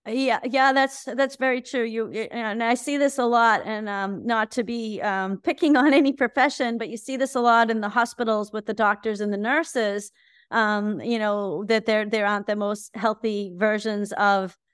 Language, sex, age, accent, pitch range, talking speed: English, female, 30-49, American, 195-230 Hz, 205 wpm